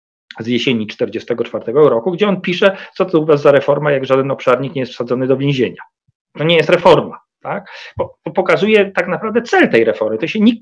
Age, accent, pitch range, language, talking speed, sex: 40-59, native, 135-220 Hz, Polish, 215 wpm, male